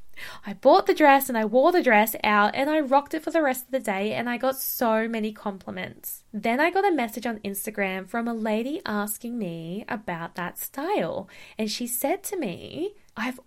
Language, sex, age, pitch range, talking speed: English, female, 10-29, 195-255 Hz, 210 wpm